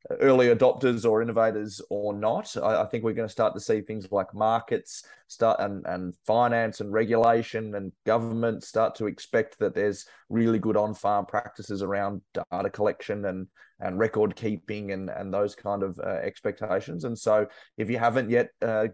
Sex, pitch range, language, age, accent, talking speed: male, 100-115 Hz, English, 20-39, Australian, 180 wpm